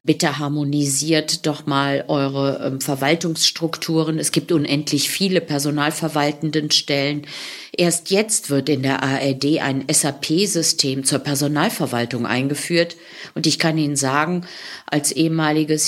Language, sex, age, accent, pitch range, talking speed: German, female, 50-69, German, 140-175 Hz, 115 wpm